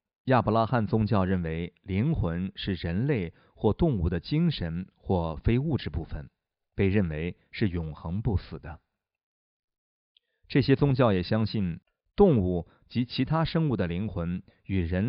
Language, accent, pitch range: Chinese, native, 85-115 Hz